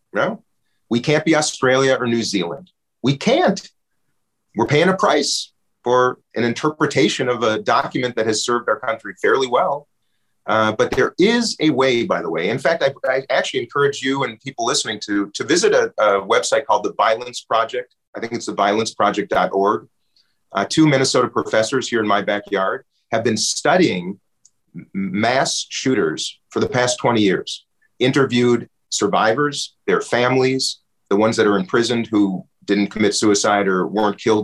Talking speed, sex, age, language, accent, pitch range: 165 wpm, male, 40-59, English, American, 110-150 Hz